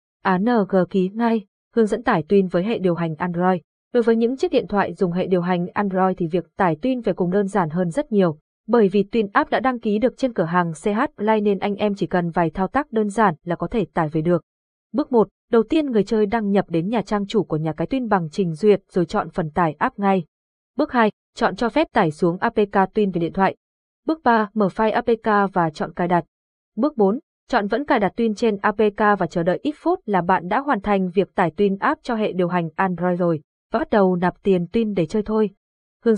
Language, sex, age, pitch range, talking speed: Vietnamese, female, 20-39, 180-225 Hz, 245 wpm